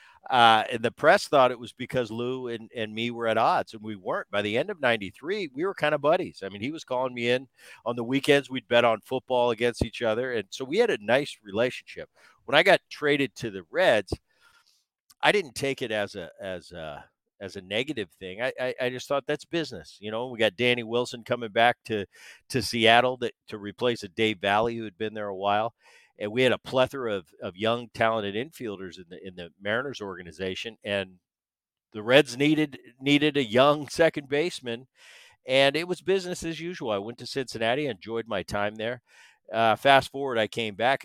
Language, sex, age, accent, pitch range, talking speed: English, male, 50-69, American, 105-135 Hz, 215 wpm